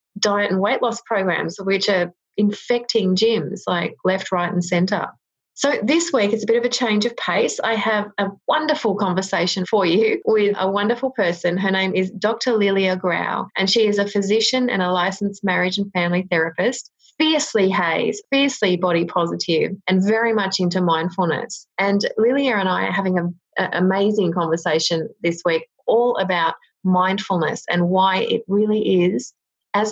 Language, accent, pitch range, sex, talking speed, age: English, Australian, 170-210 Hz, female, 170 wpm, 30-49